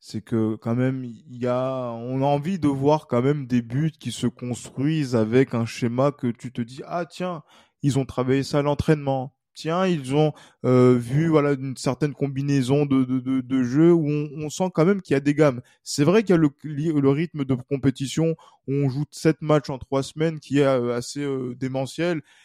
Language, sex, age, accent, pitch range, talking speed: French, male, 20-39, French, 130-150 Hz, 220 wpm